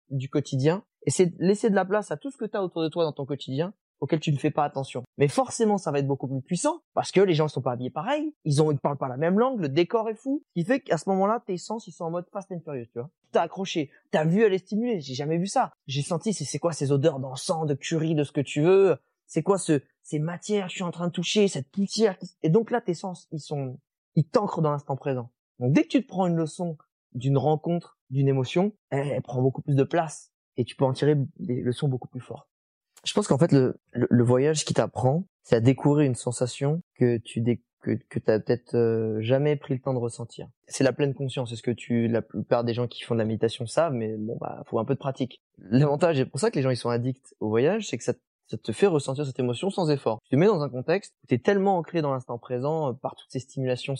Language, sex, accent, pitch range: French, male, French, 130-180 Hz